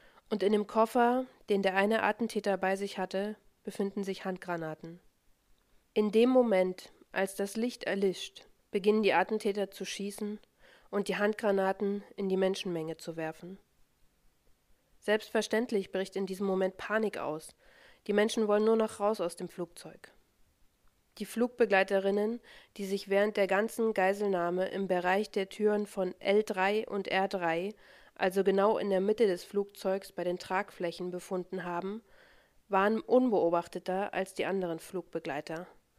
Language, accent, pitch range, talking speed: German, German, 185-215 Hz, 140 wpm